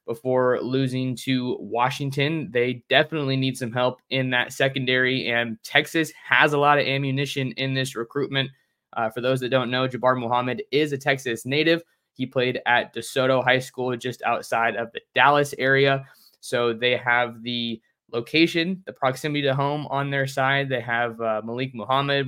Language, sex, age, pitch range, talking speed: English, male, 20-39, 125-140 Hz, 170 wpm